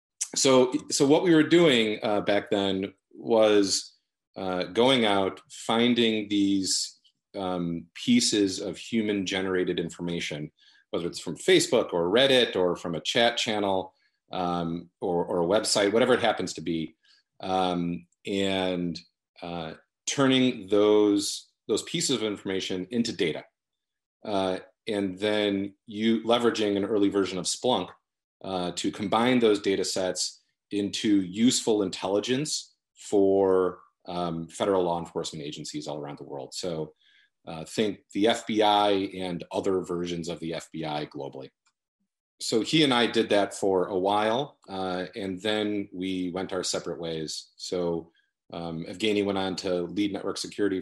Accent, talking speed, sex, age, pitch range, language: American, 140 wpm, male, 40-59, 90-105 Hz, English